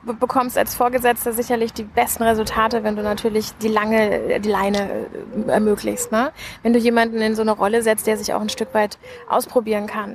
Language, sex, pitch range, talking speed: German, female, 220-245 Hz, 190 wpm